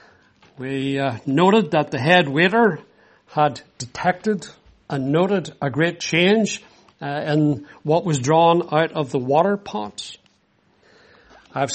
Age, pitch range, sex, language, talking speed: 60-79, 140-185 Hz, male, English, 130 wpm